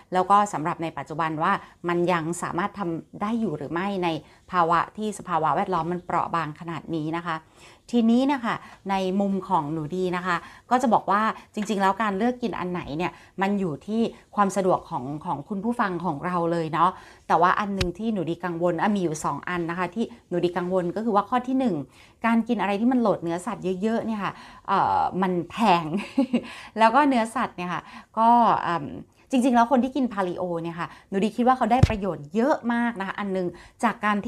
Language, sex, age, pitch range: Thai, female, 20-39, 175-230 Hz